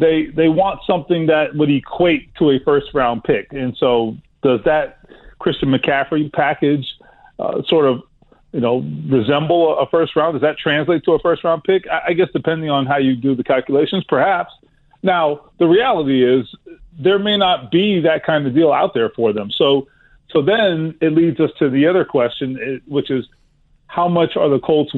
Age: 40-59